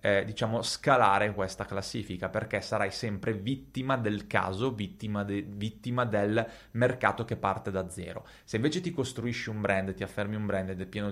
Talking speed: 180 wpm